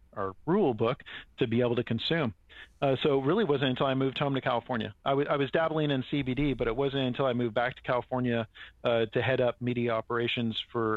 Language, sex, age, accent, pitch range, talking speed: English, male, 40-59, American, 115-135 Hz, 240 wpm